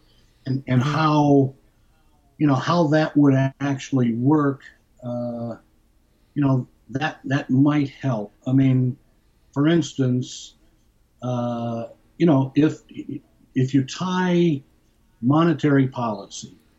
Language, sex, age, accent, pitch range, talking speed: English, male, 60-79, American, 120-145 Hz, 105 wpm